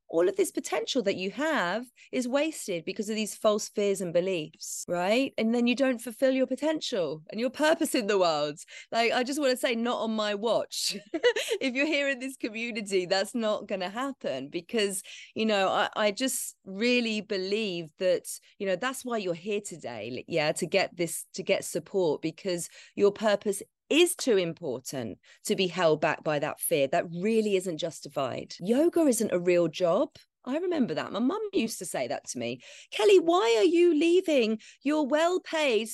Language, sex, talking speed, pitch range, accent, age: English, female, 190 wpm, 180-280 Hz, British, 30-49